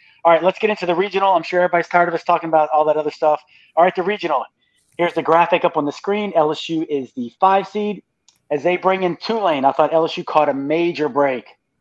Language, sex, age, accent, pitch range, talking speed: English, male, 30-49, American, 140-180 Hz, 240 wpm